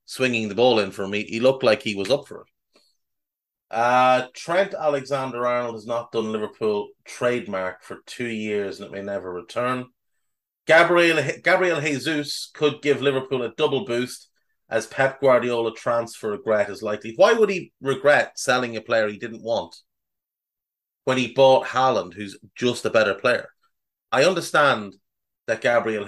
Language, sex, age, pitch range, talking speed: English, male, 30-49, 110-145 Hz, 160 wpm